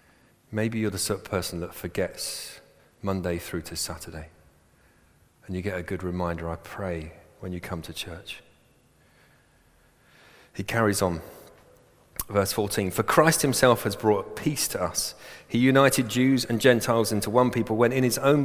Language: English